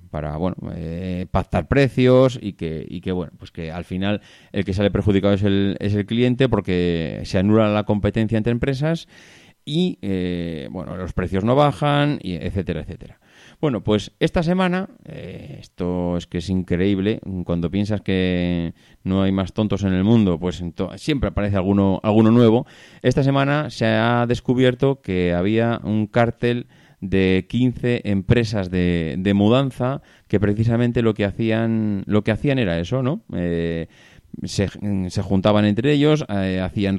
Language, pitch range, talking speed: Spanish, 90-120 Hz, 165 wpm